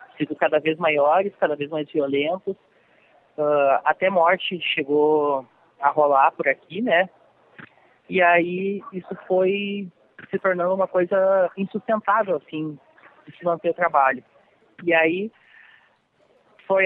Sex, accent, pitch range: male, Brazilian, 165-205 Hz